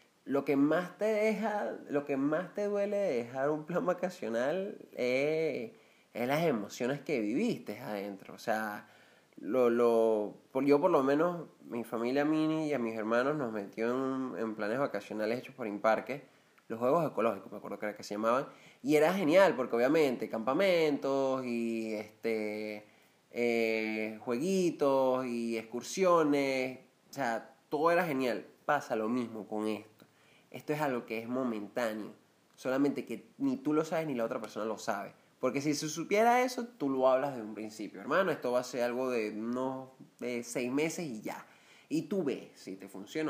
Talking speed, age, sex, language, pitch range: 175 wpm, 20-39, male, Spanish, 115-150 Hz